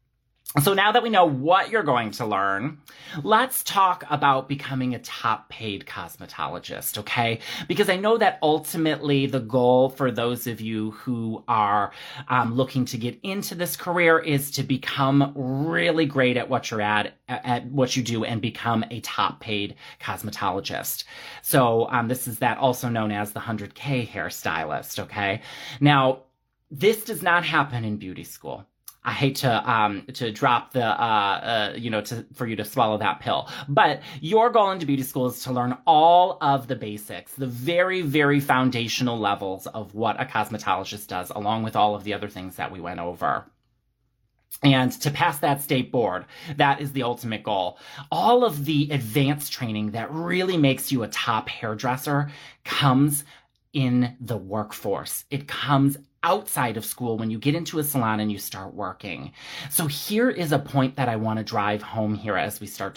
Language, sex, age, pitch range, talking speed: English, male, 30-49, 110-145 Hz, 175 wpm